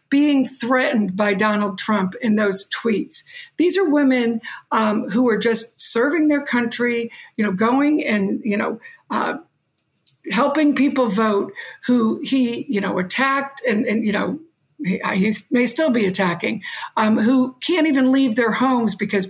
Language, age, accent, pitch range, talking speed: English, 60-79, American, 210-265 Hz, 160 wpm